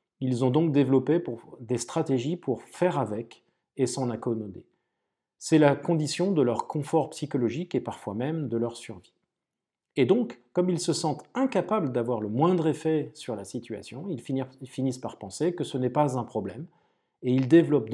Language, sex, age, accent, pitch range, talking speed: French, male, 40-59, French, 120-155 Hz, 175 wpm